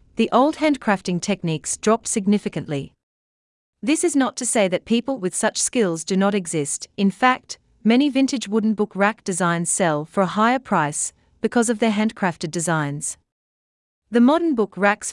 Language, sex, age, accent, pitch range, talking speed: English, female, 40-59, Australian, 160-235 Hz, 165 wpm